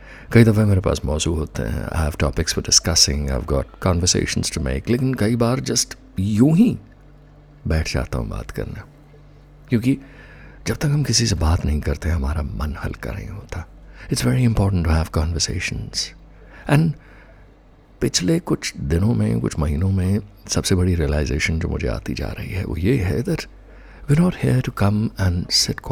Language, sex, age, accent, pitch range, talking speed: Hindi, male, 60-79, native, 80-115 Hz, 155 wpm